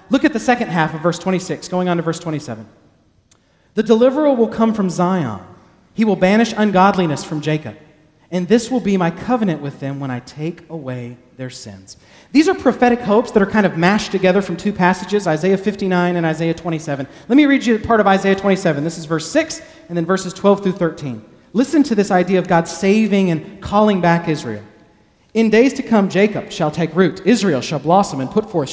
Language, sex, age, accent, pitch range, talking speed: English, male, 40-59, American, 150-205 Hz, 210 wpm